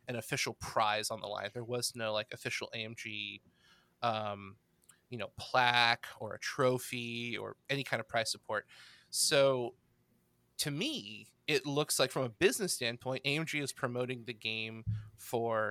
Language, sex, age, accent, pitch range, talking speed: English, male, 20-39, American, 115-140 Hz, 155 wpm